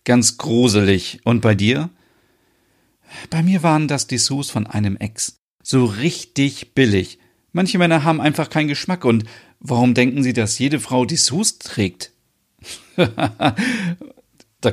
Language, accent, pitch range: German, German, 100-150 Hz